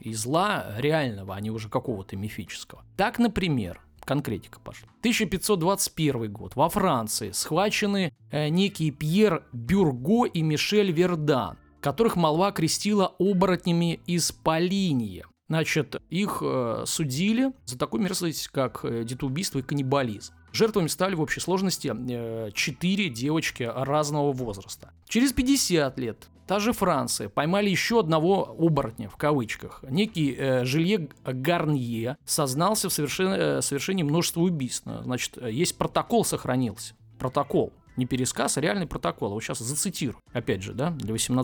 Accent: native